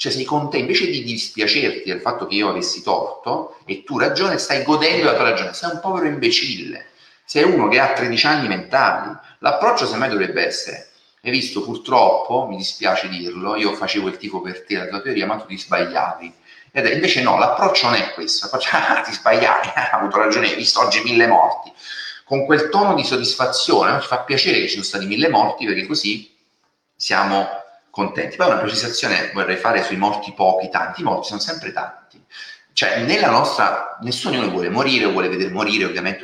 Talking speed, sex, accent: 185 wpm, male, native